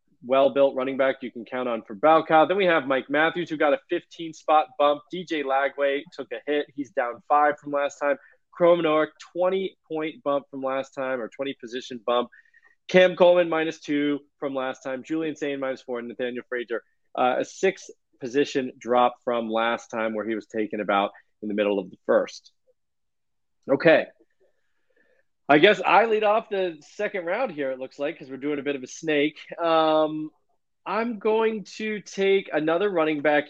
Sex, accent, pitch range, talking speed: male, American, 130-170 Hz, 185 wpm